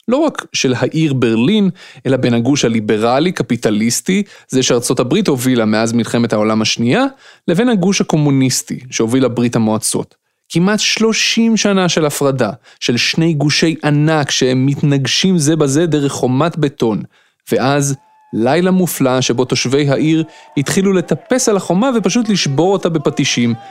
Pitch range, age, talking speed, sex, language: 125-175 Hz, 30-49, 135 wpm, male, Hebrew